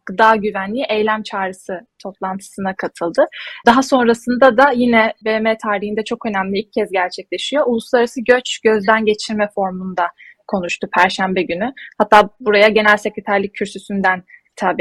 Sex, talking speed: female, 125 wpm